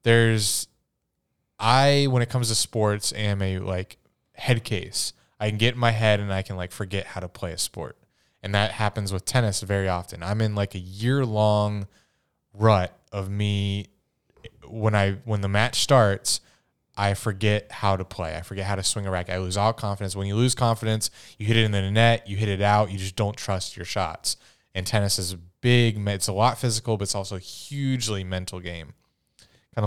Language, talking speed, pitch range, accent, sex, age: English, 205 wpm, 95-110 Hz, American, male, 20-39